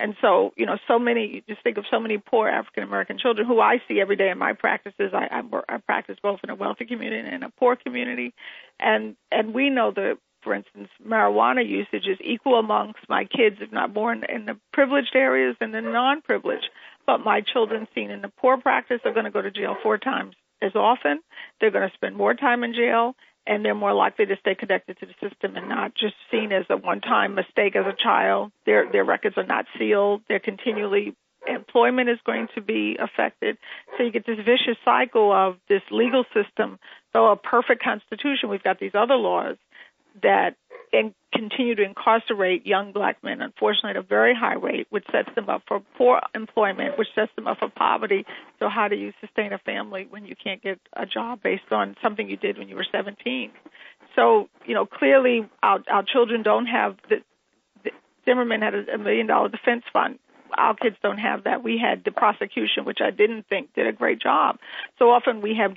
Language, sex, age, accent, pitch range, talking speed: English, female, 40-59, American, 200-255 Hz, 210 wpm